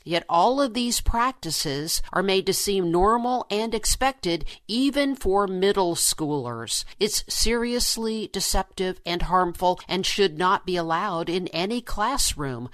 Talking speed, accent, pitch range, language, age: 135 wpm, American, 165-225 Hz, English, 50-69